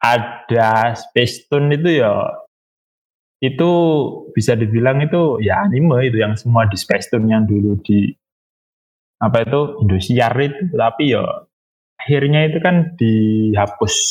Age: 20-39